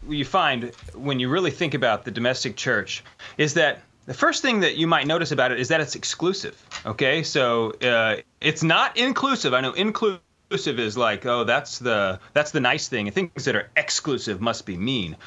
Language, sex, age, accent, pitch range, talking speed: English, male, 30-49, American, 130-180 Hz, 200 wpm